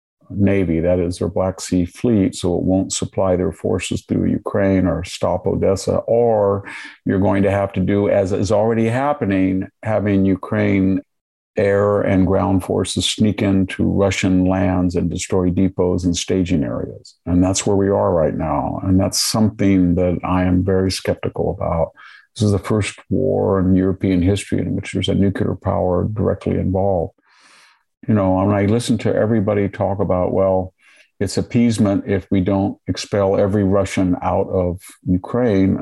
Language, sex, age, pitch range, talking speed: English, male, 50-69, 90-105 Hz, 165 wpm